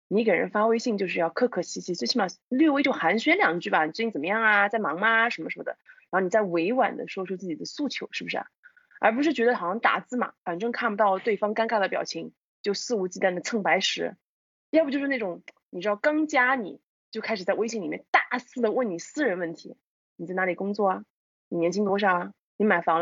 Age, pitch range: 20-39, 190-275 Hz